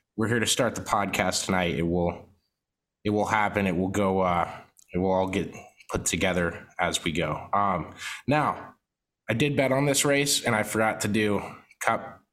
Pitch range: 95-115 Hz